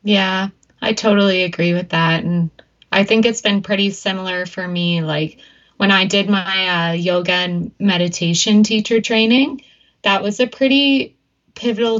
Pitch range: 180-210 Hz